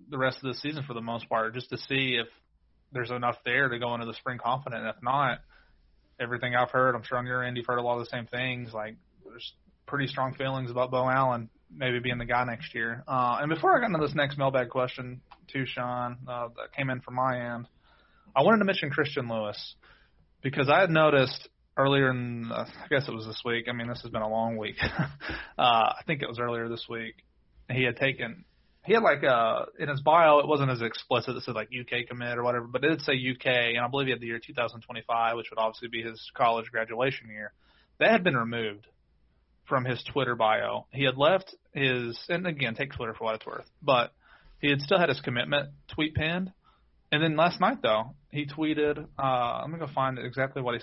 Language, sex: English, male